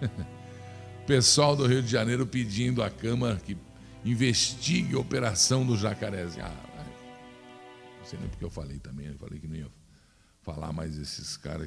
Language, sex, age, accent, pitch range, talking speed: Portuguese, male, 50-69, Brazilian, 80-110 Hz, 160 wpm